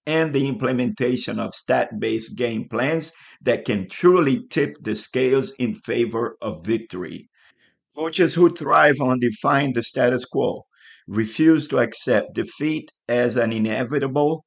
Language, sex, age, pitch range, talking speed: English, male, 50-69, 120-150 Hz, 135 wpm